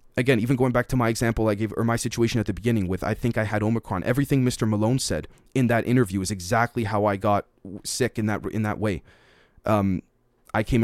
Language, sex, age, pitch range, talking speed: English, male, 30-49, 100-125 Hz, 235 wpm